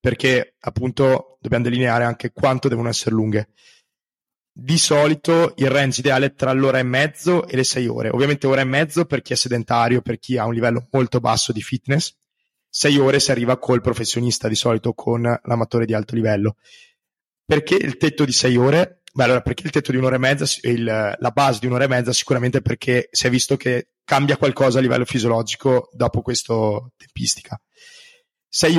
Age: 20-39